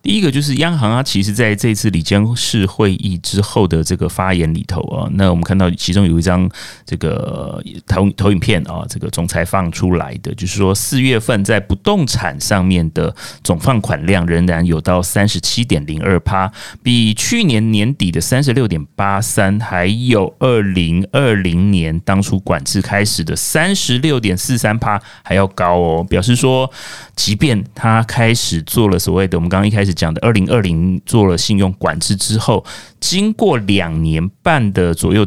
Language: Chinese